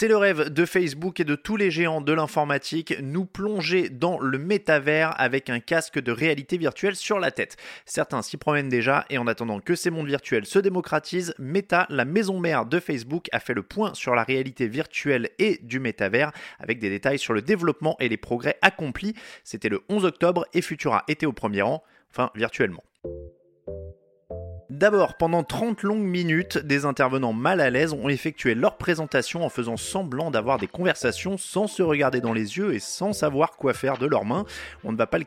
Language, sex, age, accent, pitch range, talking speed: French, male, 20-39, French, 125-180 Hz, 200 wpm